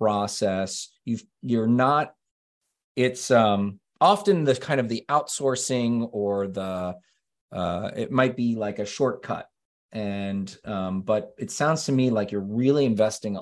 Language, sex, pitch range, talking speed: English, male, 100-130 Hz, 145 wpm